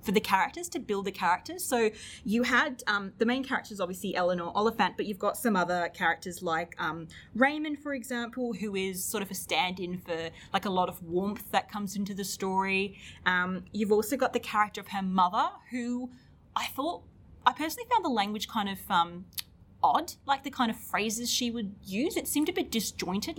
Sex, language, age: female, English, 20-39